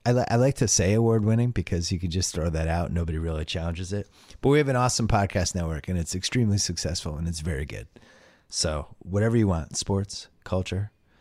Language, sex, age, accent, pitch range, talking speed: English, male, 30-49, American, 90-110 Hz, 205 wpm